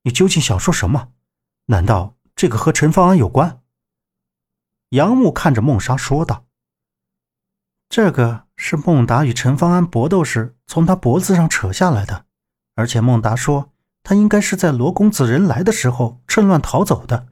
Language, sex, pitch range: Chinese, male, 115-175 Hz